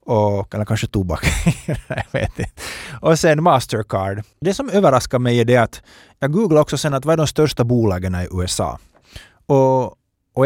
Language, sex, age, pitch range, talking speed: Finnish, male, 30-49, 105-155 Hz, 180 wpm